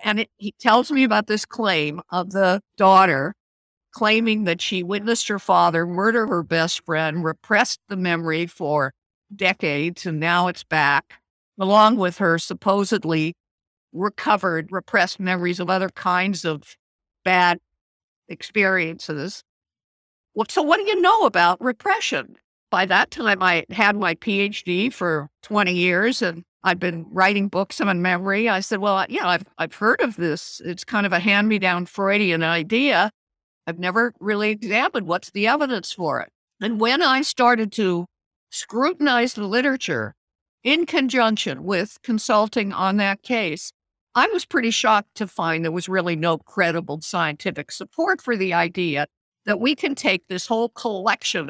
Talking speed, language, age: 150 wpm, English, 50-69